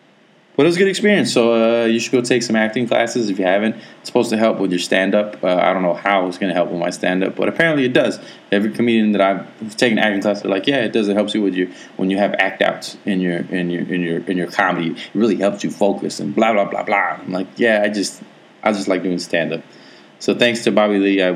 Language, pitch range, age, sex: English, 100-115 Hz, 20-39, male